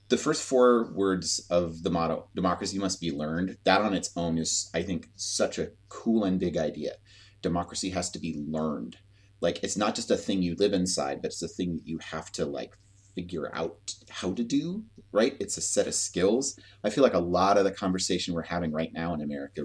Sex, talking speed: male, 220 wpm